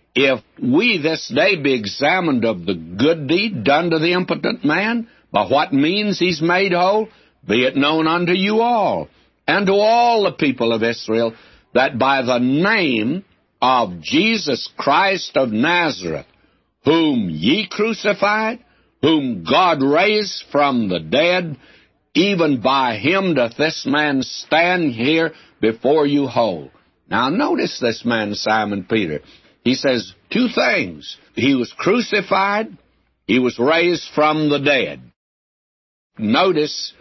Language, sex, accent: English, male, American